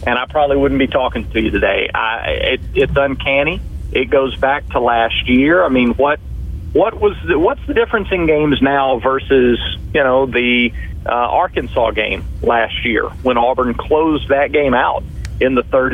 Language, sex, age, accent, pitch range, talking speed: English, male, 40-59, American, 110-140 Hz, 185 wpm